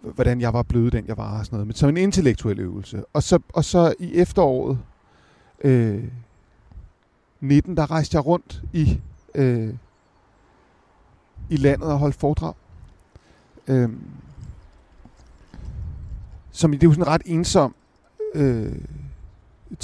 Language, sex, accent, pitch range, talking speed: Danish, male, native, 110-145 Hz, 135 wpm